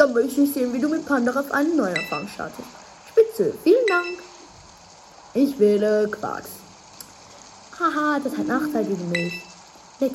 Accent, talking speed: German, 155 wpm